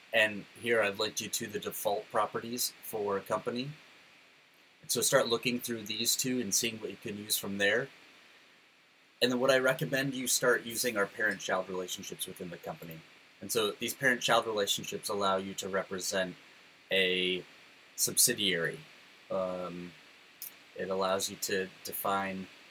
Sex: male